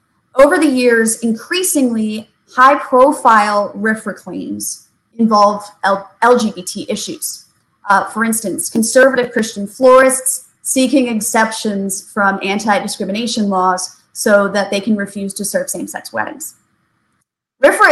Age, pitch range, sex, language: 20-39, 200-250 Hz, female, English